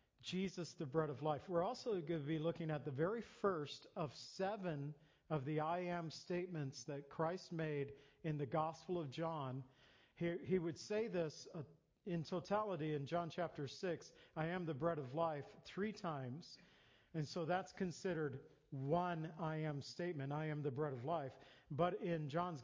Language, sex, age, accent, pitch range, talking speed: English, male, 50-69, American, 150-180 Hz, 180 wpm